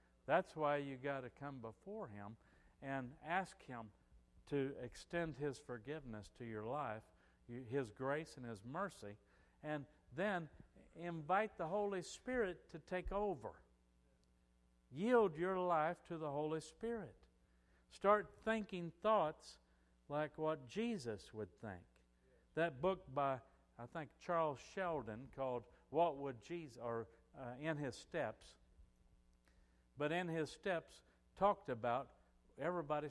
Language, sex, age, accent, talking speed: English, male, 60-79, American, 125 wpm